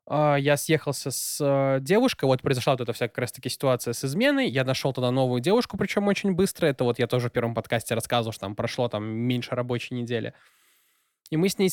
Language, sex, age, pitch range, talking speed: Russian, male, 20-39, 130-160 Hz, 205 wpm